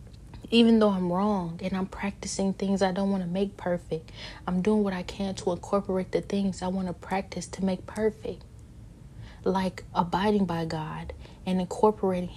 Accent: American